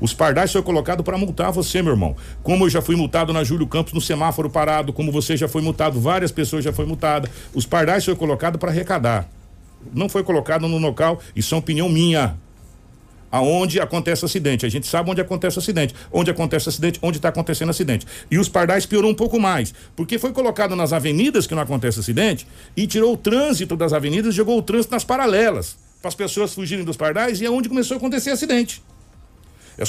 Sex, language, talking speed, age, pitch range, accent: male, Portuguese, 210 wpm, 60-79, 150-200 Hz, Brazilian